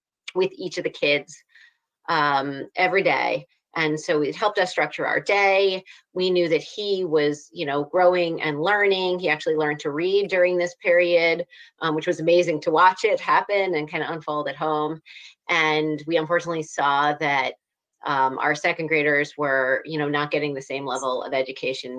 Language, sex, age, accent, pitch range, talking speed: English, female, 30-49, American, 140-175 Hz, 185 wpm